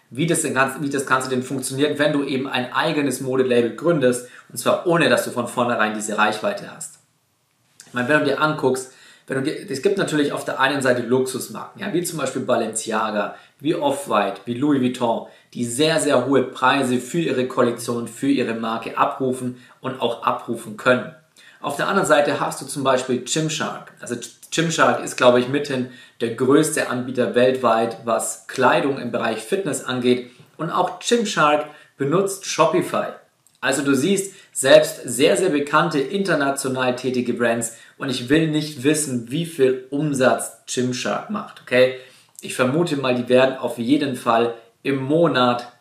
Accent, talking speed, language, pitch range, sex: German, 170 wpm, German, 120-145 Hz, male